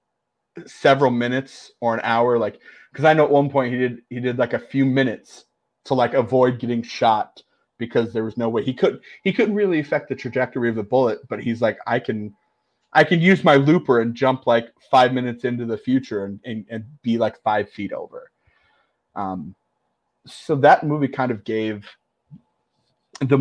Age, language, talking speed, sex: 30-49, English, 190 wpm, male